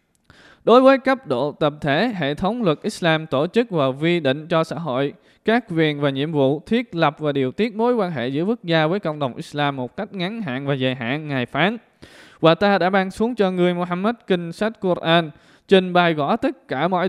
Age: 20-39